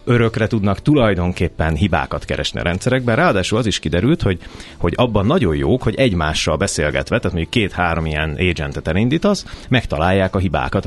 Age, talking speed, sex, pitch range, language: 30-49, 155 wpm, male, 80-110 Hz, Hungarian